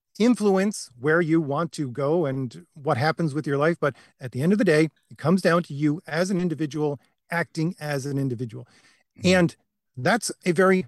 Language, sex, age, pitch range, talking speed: English, male, 40-59, 135-170 Hz, 195 wpm